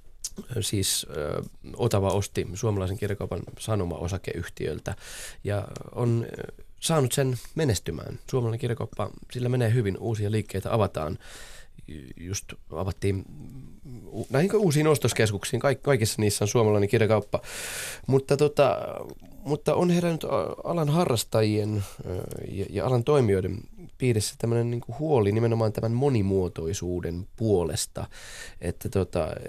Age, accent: 20-39, native